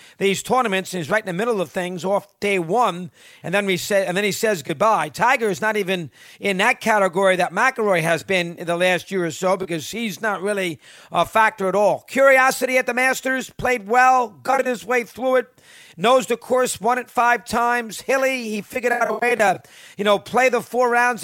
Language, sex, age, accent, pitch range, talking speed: English, male, 50-69, American, 195-245 Hz, 220 wpm